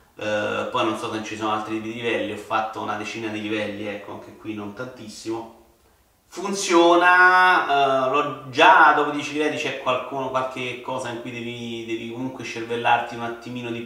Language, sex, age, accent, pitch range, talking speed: Italian, male, 30-49, native, 110-140 Hz, 175 wpm